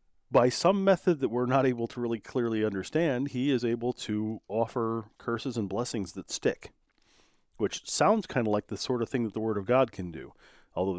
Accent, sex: American, male